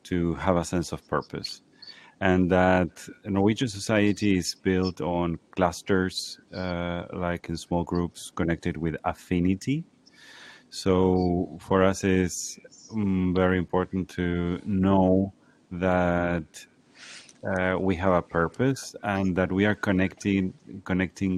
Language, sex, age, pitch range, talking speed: English, male, 30-49, 85-95 Hz, 120 wpm